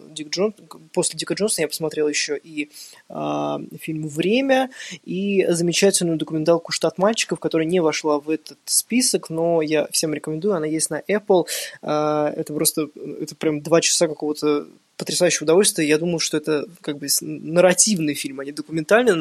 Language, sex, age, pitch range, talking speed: Ukrainian, male, 20-39, 150-180 Hz, 155 wpm